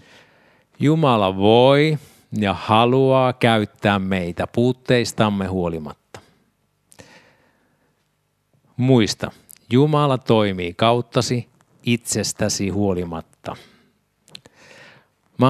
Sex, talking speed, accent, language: male, 60 wpm, native, Finnish